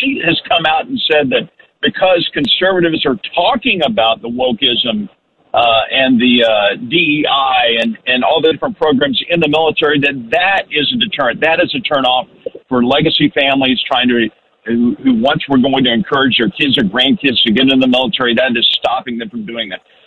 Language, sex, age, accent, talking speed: English, male, 50-69, American, 195 wpm